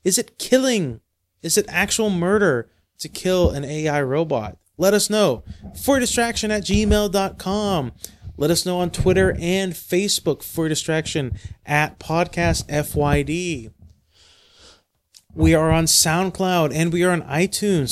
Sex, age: male, 30-49